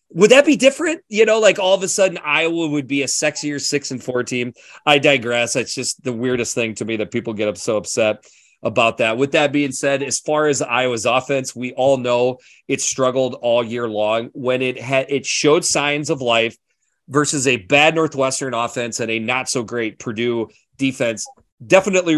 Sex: male